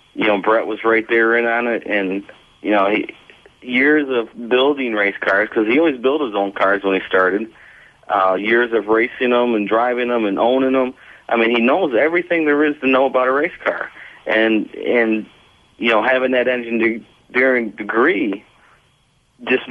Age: 40-59